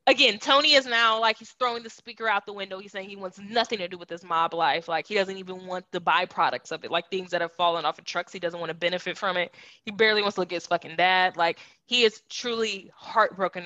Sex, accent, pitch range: female, American, 175-215 Hz